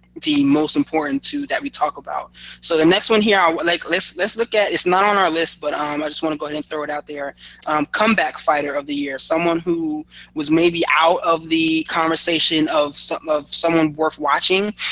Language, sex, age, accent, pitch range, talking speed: English, male, 20-39, American, 150-175 Hz, 225 wpm